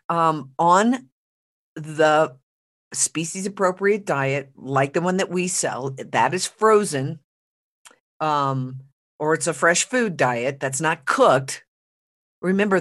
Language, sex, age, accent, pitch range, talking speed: English, female, 50-69, American, 130-180 Hz, 120 wpm